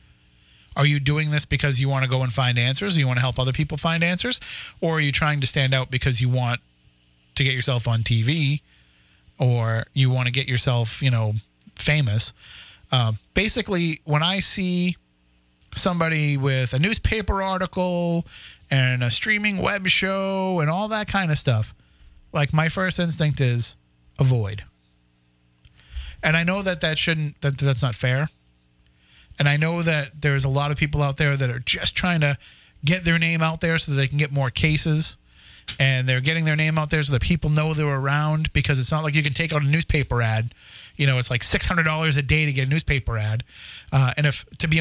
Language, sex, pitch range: English, male, 120-160 Hz